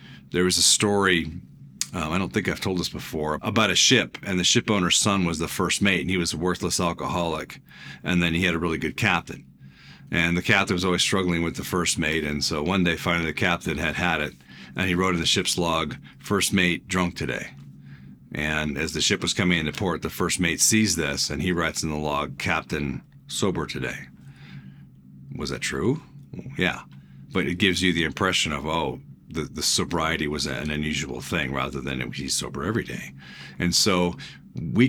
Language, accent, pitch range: English, American, 75-105 Hz